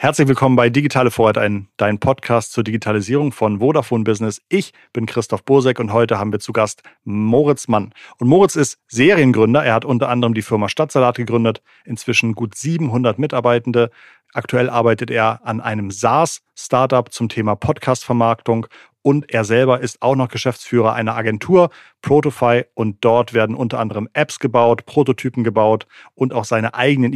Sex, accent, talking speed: male, German, 160 wpm